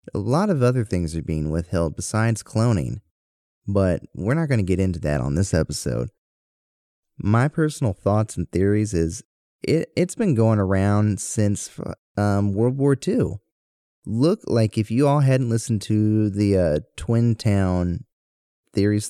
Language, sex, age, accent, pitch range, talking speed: English, male, 30-49, American, 95-135 Hz, 155 wpm